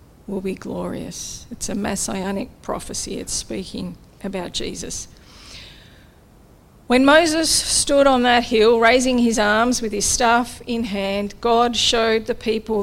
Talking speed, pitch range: 135 wpm, 195-230 Hz